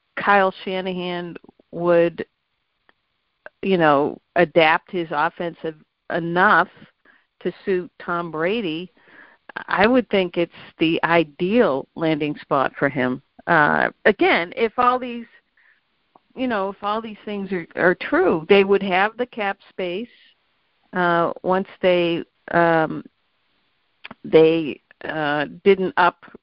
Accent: American